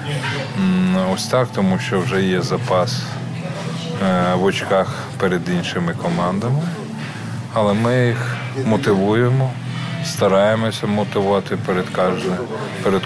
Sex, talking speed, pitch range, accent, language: male, 85 wpm, 90-120 Hz, native, Ukrainian